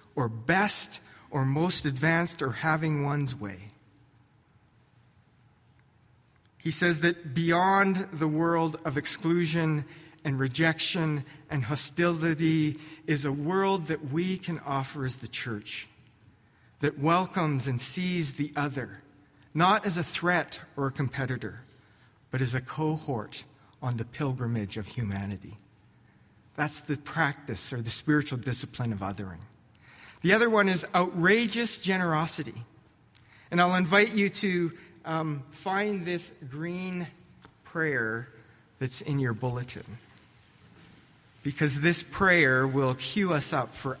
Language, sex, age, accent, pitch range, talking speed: English, male, 40-59, American, 120-170 Hz, 125 wpm